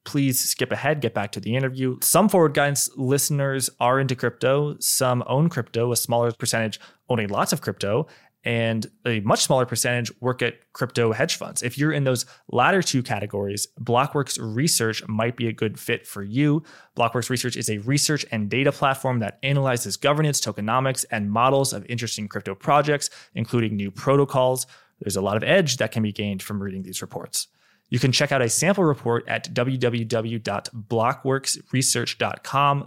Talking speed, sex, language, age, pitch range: 170 wpm, male, English, 20-39, 115-140 Hz